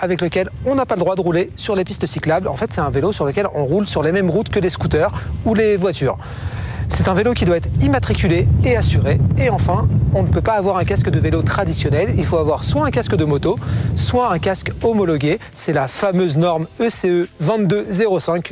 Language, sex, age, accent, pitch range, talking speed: French, male, 40-59, French, 155-200 Hz, 230 wpm